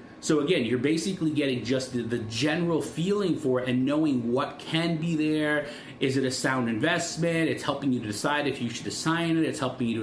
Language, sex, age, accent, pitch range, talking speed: English, male, 30-49, American, 120-155 Hz, 215 wpm